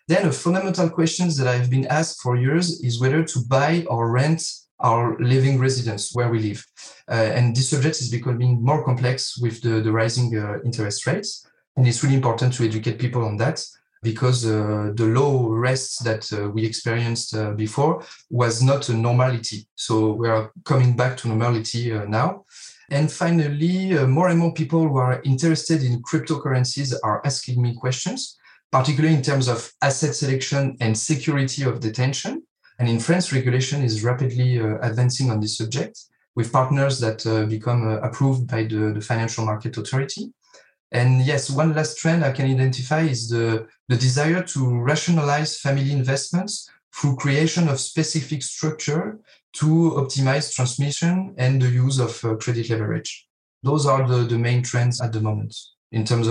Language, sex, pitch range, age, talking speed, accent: English, male, 115-150 Hz, 30-49, 175 wpm, French